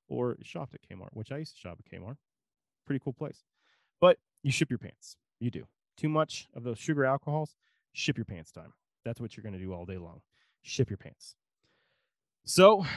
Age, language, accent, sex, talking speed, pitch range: 20-39, English, American, male, 200 wpm, 105-140 Hz